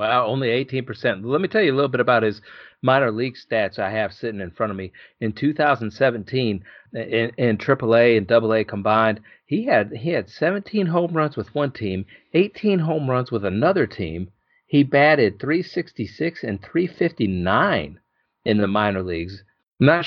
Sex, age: male, 40-59